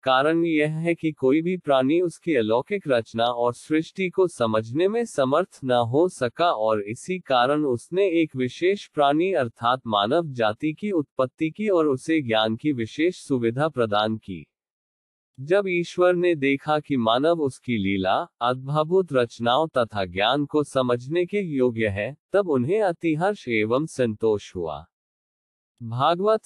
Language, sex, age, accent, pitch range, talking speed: Hindi, male, 20-39, native, 120-165 Hz, 145 wpm